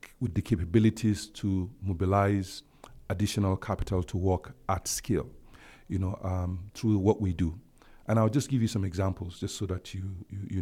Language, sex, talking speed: English, male, 175 wpm